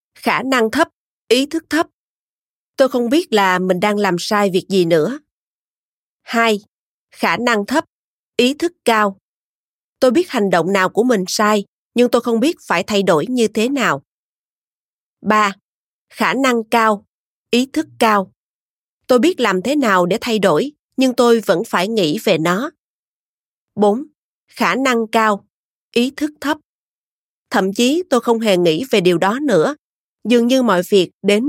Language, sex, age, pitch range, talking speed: Vietnamese, female, 20-39, 195-260 Hz, 165 wpm